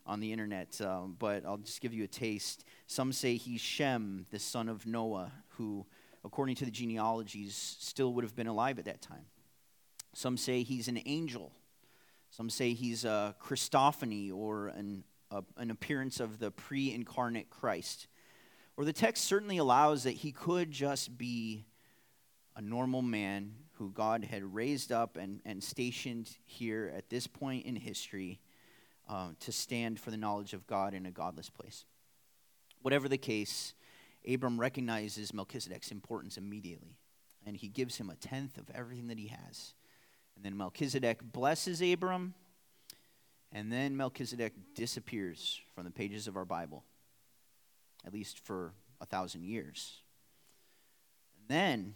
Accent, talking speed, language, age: American, 150 wpm, English, 30-49